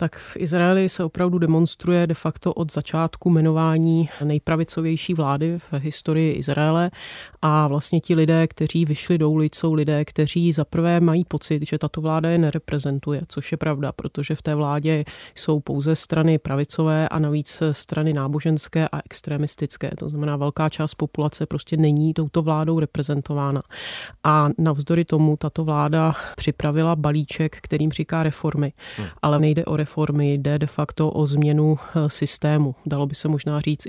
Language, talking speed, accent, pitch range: Czech, 160 wpm, native, 150-160 Hz